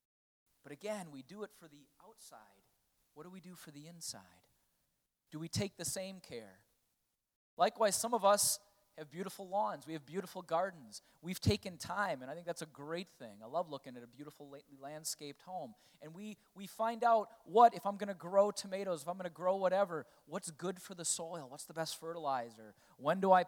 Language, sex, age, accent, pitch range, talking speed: English, male, 30-49, American, 155-200 Hz, 205 wpm